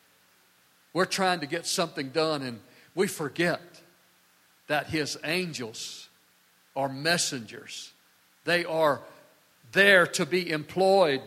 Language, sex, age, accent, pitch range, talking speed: English, male, 50-69, American, 140-195 Hz, 105 wpm